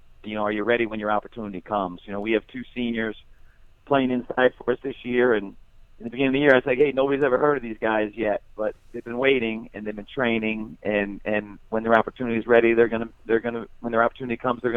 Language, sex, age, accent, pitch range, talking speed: English, male, 40-59, American, 105-120 Hz, 255 wpm